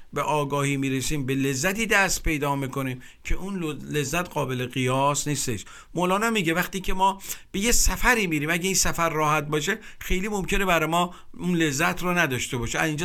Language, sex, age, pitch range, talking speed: Persian, male, 50-69, 135-180 Hz, 180 wpm